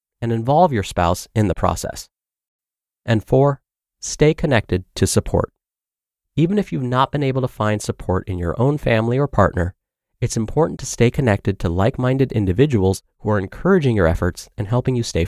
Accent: American